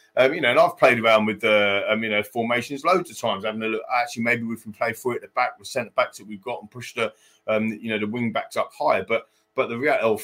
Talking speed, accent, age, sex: 310 wpm, British, 30-49, male